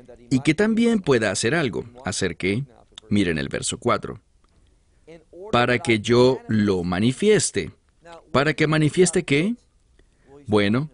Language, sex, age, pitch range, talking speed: English, male, 40-59, 105-175 Hz, 120 wpm